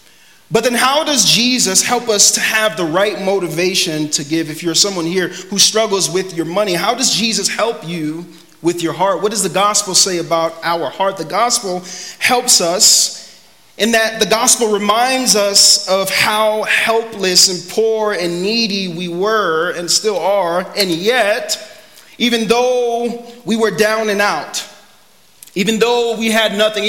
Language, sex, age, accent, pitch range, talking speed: English, male, 30-49, American, 185-225 Hz, 165 wpm